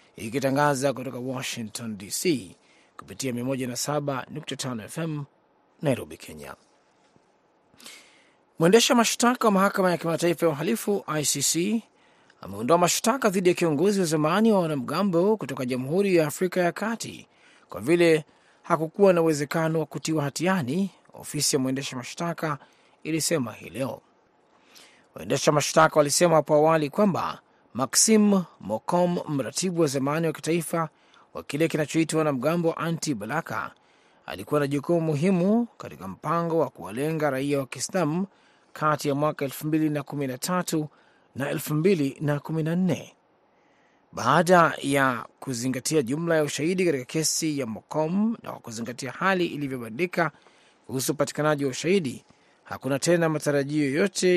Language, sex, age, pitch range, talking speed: Swahili, male, 30-49, 140-175 Hz, 120 wpm